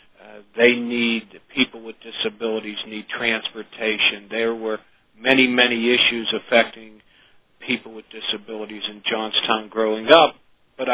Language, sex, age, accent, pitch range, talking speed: English, male, 50-69, American, 105-120 Hz, 120 wpm